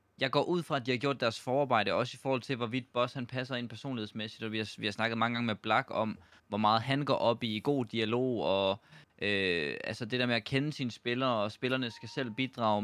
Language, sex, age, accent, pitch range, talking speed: Danish, male, 20-39, native, 105-130 Hz, 250 wpm